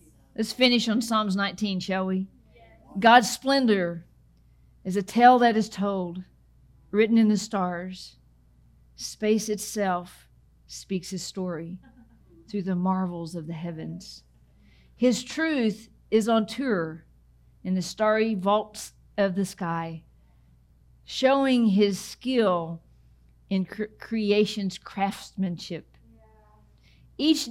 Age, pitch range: 50-69, 155-210 Hz